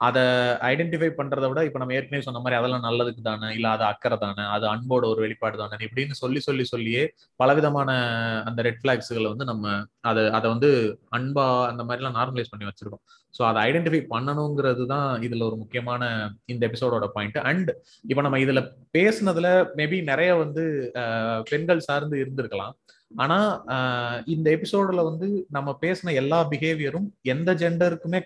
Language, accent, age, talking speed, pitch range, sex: Tamil, native, 20-39, 130 wpm, 125-165 Hz, male